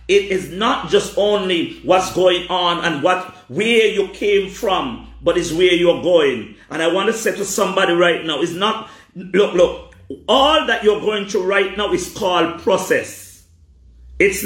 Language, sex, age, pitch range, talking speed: English, male, 40-59, 160-205 Hz, 180 wpm